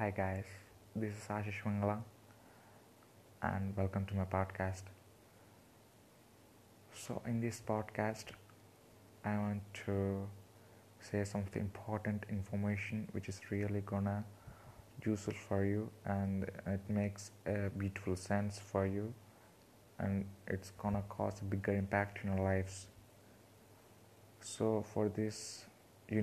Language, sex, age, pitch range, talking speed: English, male, 20-39, 100-110 Hz, 115 wpm